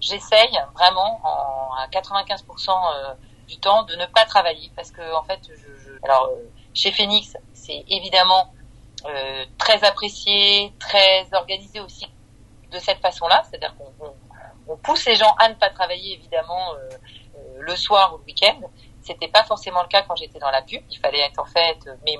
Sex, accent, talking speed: female, French, 180 wpm